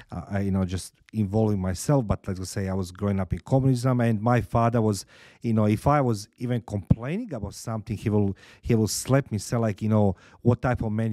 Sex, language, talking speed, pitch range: male, English, 235 wpm, 95-115 Hz